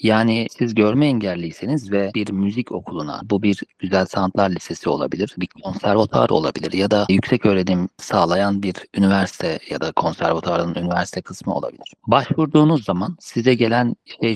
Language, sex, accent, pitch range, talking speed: Turkish, male, native, 100-140 Hz, 145 wpm